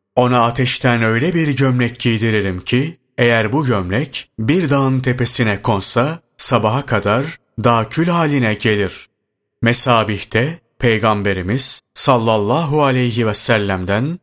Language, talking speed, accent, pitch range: Turkish, 110 wpm, native, 110-135 Hz